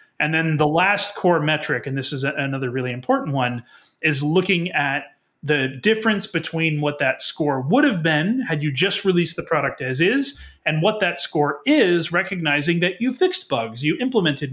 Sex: male